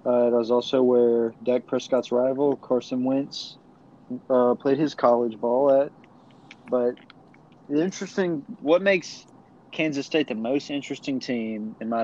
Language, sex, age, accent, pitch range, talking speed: English, male, 20-39, American, 115-135 Hz, 145 wpm